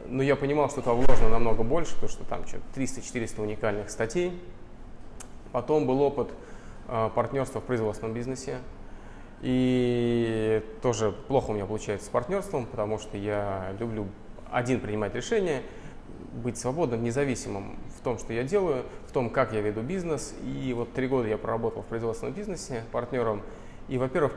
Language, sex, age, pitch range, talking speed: Russian, male, 20-39, 110-140 Hz, 155 wpm